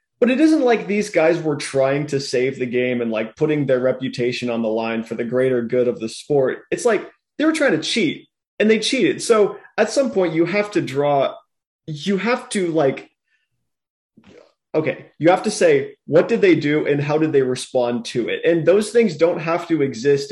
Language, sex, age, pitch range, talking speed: English, male, 20-39, 125-185 Hz, 215 wpm